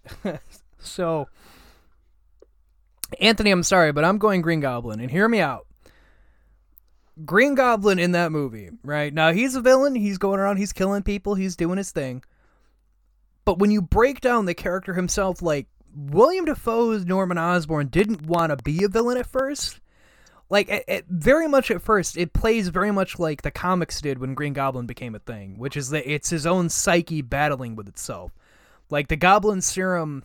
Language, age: English, 20-39